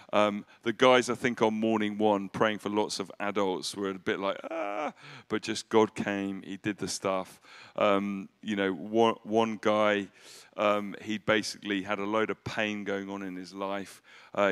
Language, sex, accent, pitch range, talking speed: English, male, British, 100-120 Hz, 190 wpm